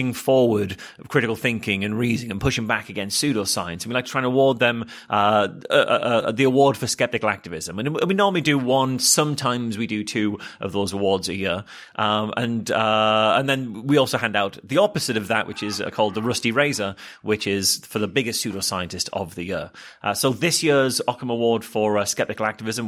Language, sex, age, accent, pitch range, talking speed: English, male, 30-49, British, 110-135 Hz, 205 wpm